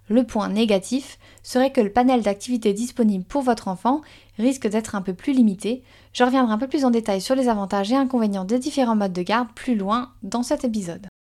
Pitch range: 210-255 Hz